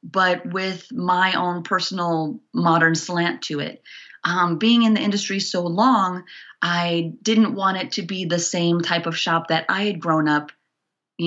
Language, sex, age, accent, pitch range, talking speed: English, female, 30-49, American, 160-195 Hz, 175 wpm